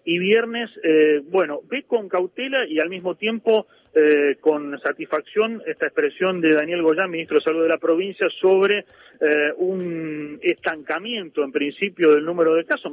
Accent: Argentinian